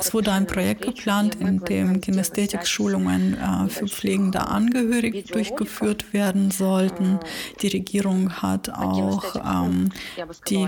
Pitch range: 185-210 Hz